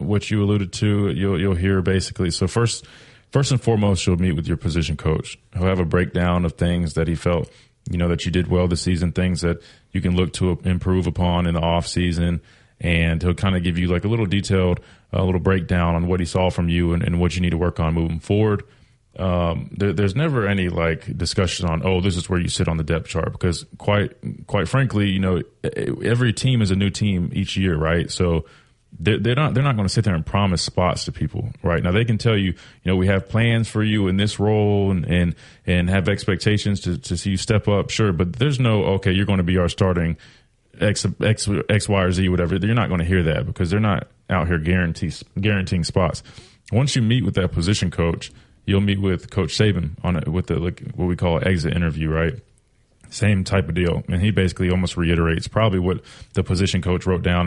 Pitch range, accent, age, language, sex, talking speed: 85-105 Hz, American, 20-39, English, male, 230 wpm